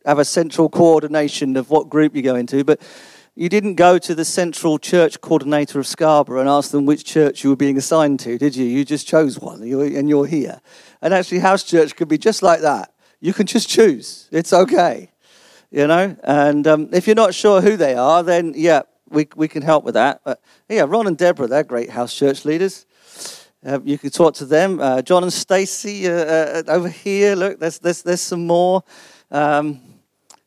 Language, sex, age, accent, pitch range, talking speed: English, male, 40-59, British, 145-180 Hz, 205 wpm